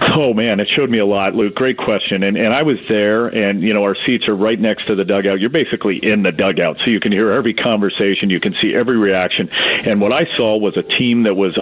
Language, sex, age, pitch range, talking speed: English, male, 40-59, 100-135 Hz, 265 wpm